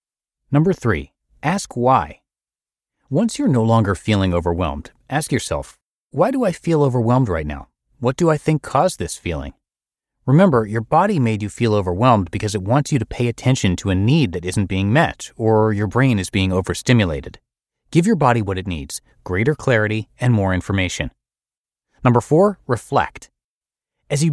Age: 30-49